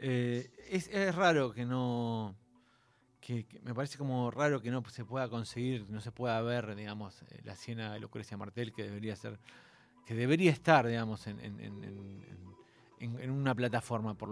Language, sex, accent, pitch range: Spanish, male, Argentinian, 105-130 Hz